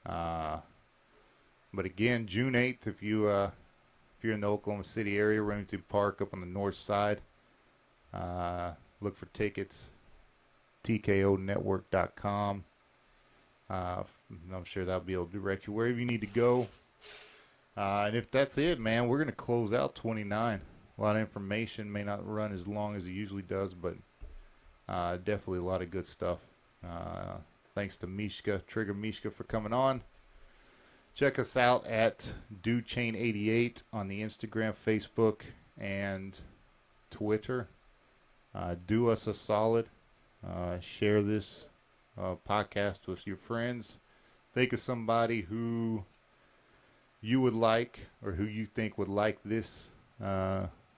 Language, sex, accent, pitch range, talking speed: English, male, American, 95-115 Hz, 145 wpm